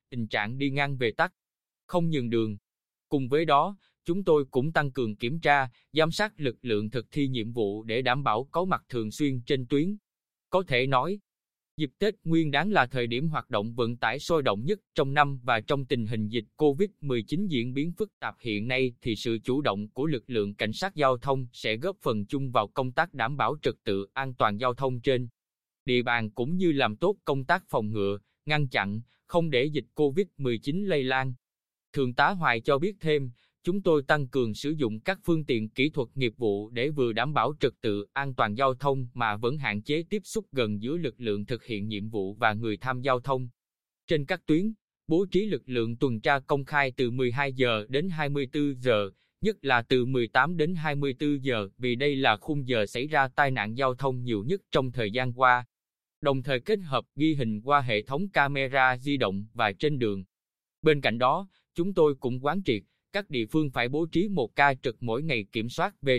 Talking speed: 215 wpm